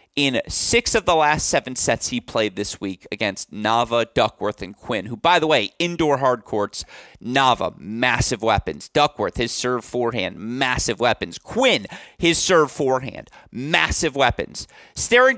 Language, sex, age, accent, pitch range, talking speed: English, male, 30-49, American, 115-150 Hz, 150 wpm